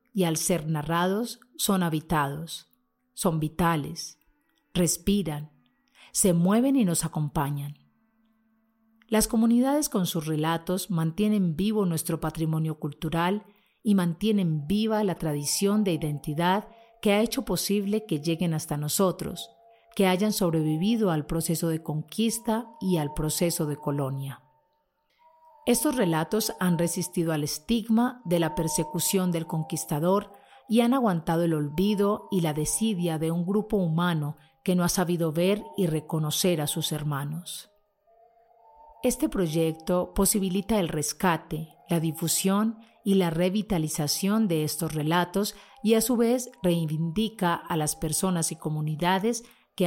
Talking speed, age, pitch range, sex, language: 130 wpm, 40-59, 160-215 Hz, female, Spanish